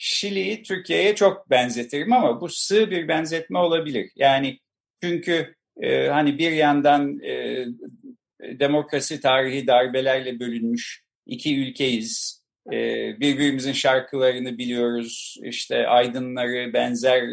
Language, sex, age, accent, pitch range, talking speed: Turkish, male, 50-69, native, 130-195 Hz, 105 wpm